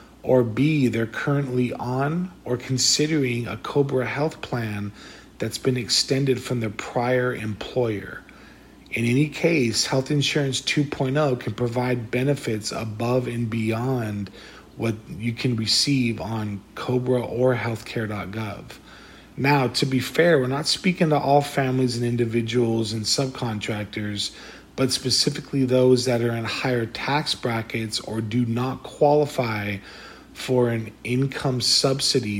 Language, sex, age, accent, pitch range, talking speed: English, male, 40-59, American, 115-135 Hz, 130 wpm